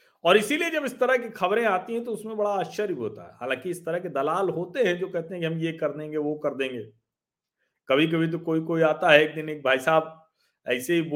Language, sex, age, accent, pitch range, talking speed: Hindi, male, 40-59, native, 140-205 Hz, 215 wpm